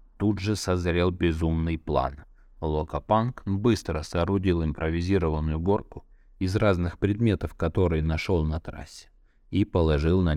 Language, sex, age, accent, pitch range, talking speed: Russian, male, 20-39, native, 80-100 Hz, 115 wpm